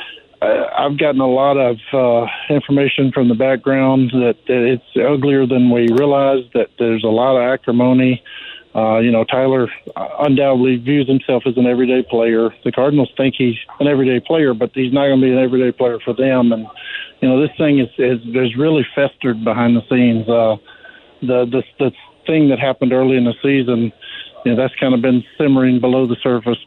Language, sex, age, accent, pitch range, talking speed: English, male, 50-69, American, 120-135 Hz, 190 wpm